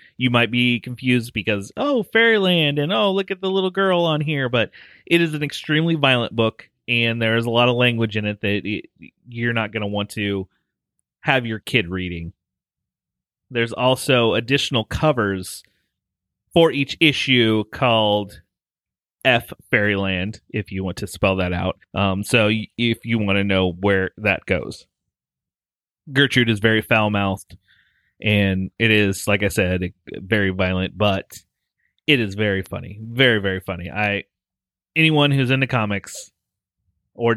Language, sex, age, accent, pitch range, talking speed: English, male, 30-49, American, 100-125 Hz, 155 wpm